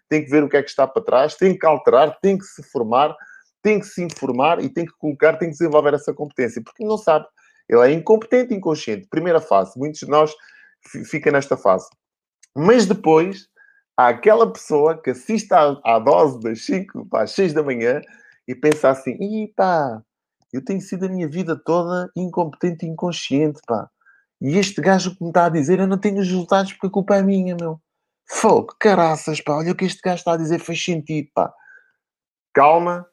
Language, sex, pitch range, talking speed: Portuguese, male, 150-195 Hz, 205 wpm